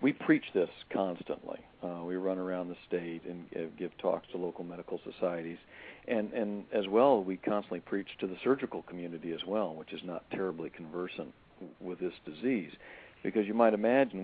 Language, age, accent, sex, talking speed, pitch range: English, 50-69, American, male, 180 wpm, 90-115 Hz